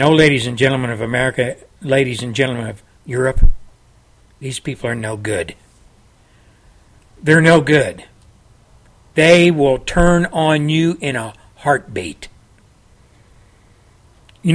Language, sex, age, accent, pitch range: Japanese, male, 60-79, American, 110-180 Hz